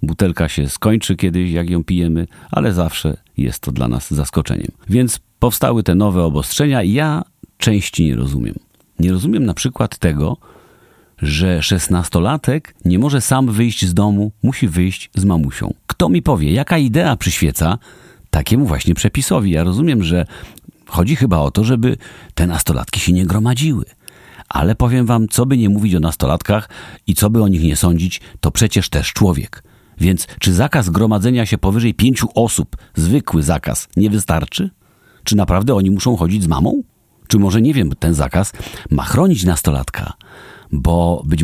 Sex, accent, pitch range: male, native, 85-115 Hz